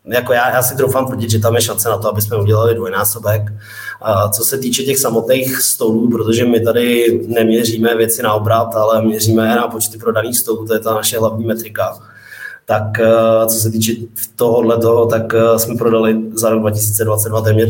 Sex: male